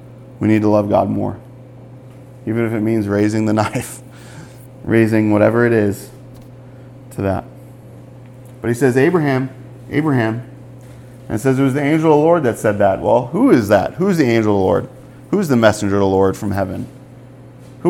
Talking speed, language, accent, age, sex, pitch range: 195 wpm, English, American, 40-59, male, 110-130 Hz